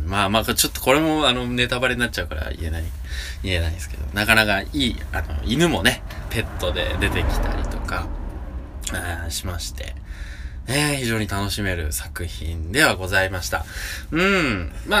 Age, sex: 20-39, male